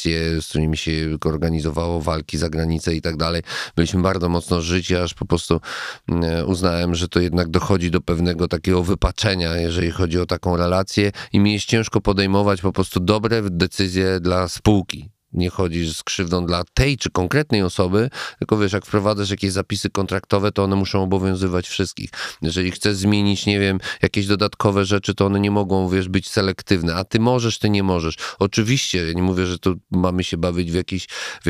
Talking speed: 180 wpm